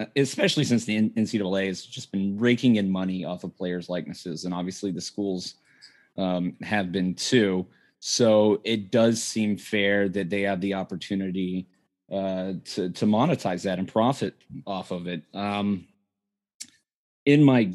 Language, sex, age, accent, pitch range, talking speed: English, male, 20-39, American, 95-115 Hz, 150 wpm